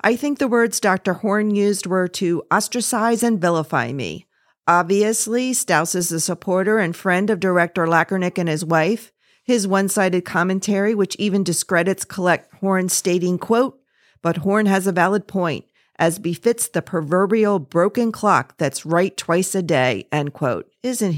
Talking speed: 160 wpm